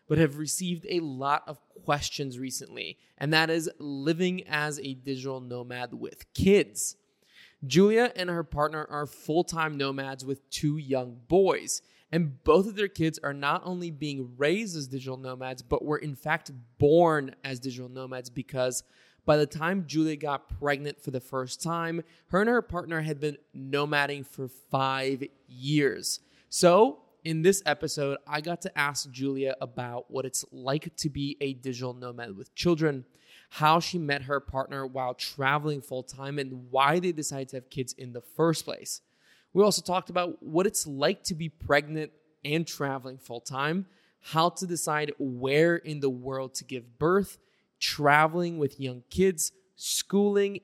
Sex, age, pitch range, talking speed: male, 20-39, 135-165 Hz, 165 wpm